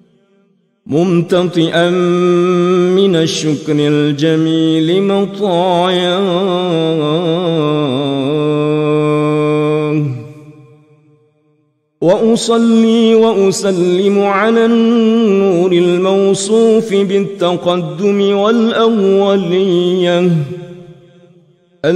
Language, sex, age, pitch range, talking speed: Arabic, male, 50-69, 150-200 Hz, 35 wpm